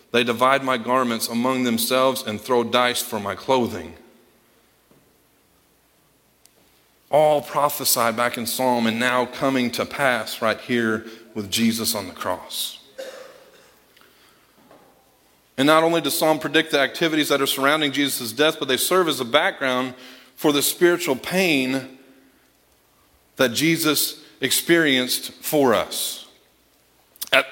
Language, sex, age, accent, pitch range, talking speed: English, male, 40-59, American, 125-180 Hz, 125 wpm